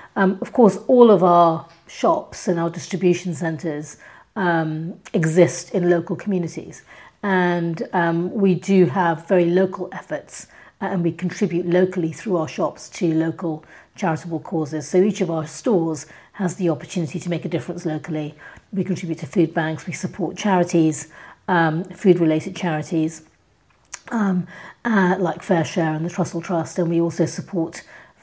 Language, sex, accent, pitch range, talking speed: English, female, British, 165-185 Hz, 155 wpm